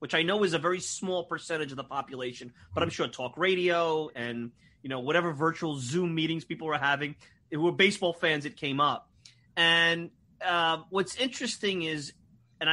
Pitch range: 145-205 Hz